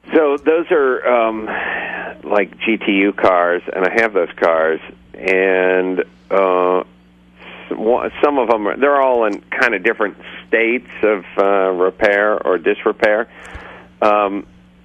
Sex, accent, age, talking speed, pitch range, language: male, American, 50-69, 115 wpm, 75-100 Hz, English